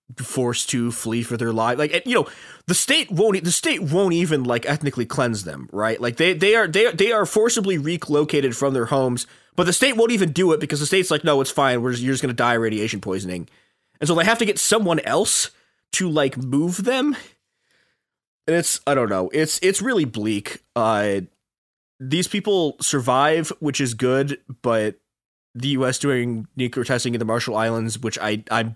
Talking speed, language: 200 wpm, English